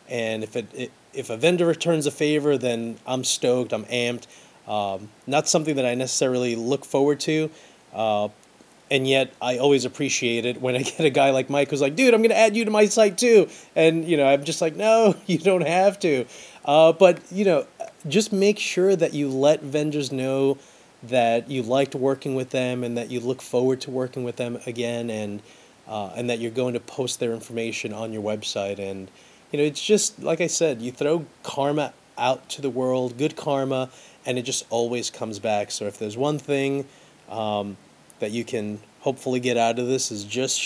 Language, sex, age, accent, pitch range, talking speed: English, male, 30-49, American, 115-150 Hz, 210 wpm